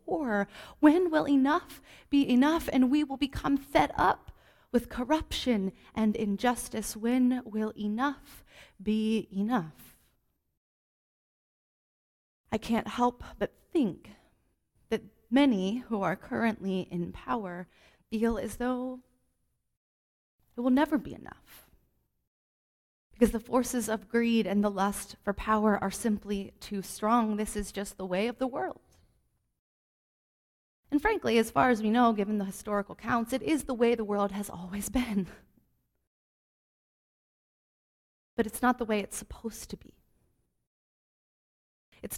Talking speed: 130 wpm